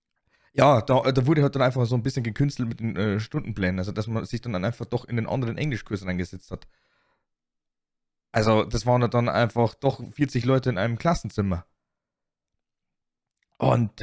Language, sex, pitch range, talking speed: German, male, 115-145 Hz, 175 wpm